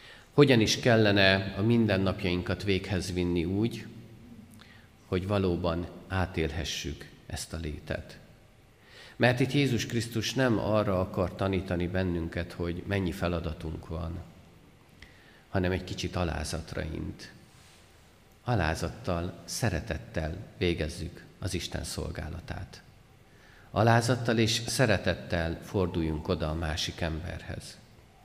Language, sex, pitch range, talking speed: Hungarian, male, 85-110 Hz, 100 wpm